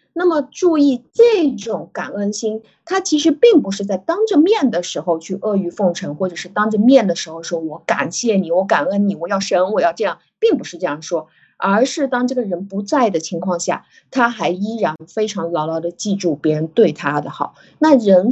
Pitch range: 175-260 Hz